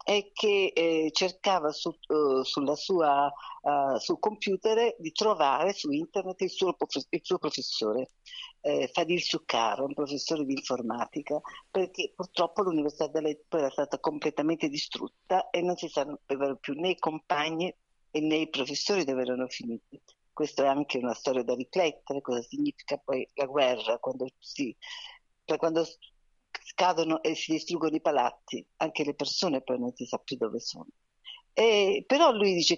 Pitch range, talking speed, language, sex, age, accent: 145-215 Hz, 155 wpm, Italian, female, 50-69, native